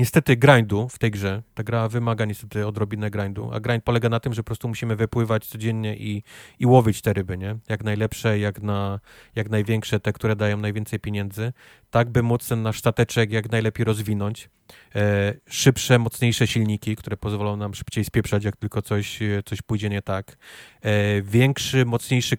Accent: native